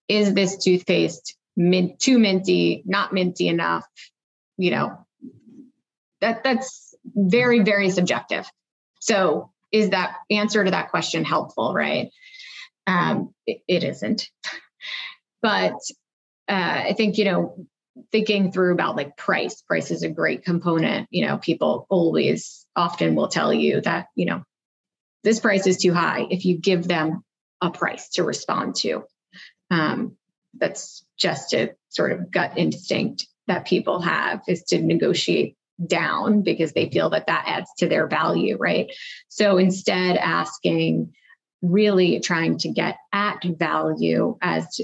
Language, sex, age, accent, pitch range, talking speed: English, female, 30-49, American, 175-220 Hz, 140 wpm